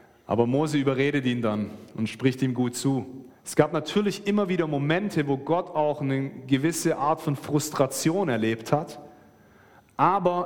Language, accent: German, German